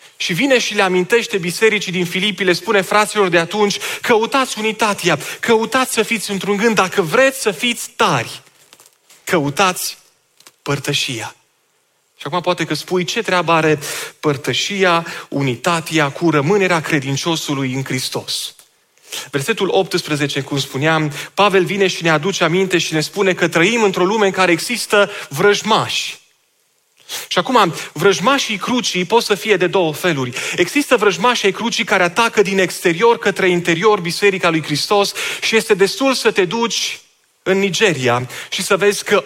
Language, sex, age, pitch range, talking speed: Romanian, male, 30-49, 170-215 Hz, 150 wpm